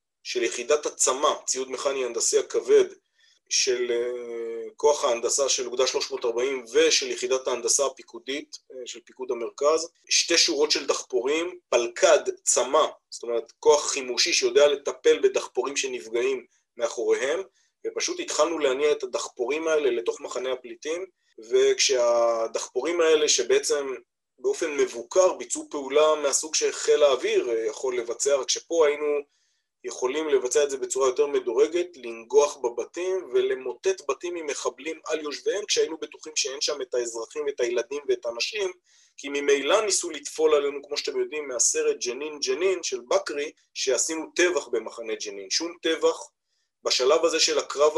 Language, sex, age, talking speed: Hebrew, male, 20-39, 135 wpm